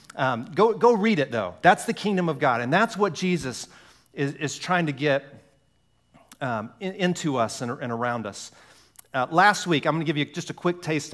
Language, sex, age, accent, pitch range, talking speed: English, male, 40-59, American, 120-155 Hz, 215 wpm